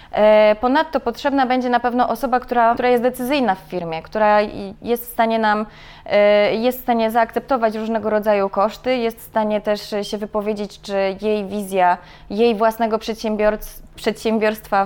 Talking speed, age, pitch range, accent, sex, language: 150 wpm, 20-39, 205-240 Hz, native, female, Polish